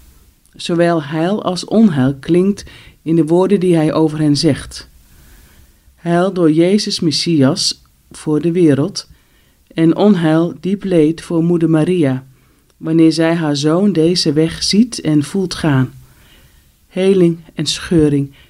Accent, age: Dutch, 40-59